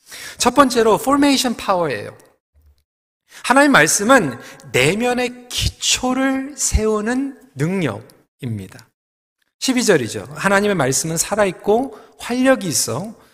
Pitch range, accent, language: 165-255 Hz, native, Korean